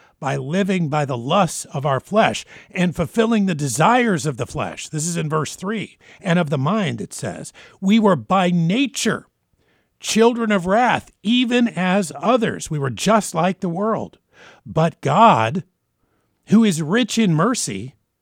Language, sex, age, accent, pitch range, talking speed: English, male, 50-69, American, 145-200 Hz, 160 wpm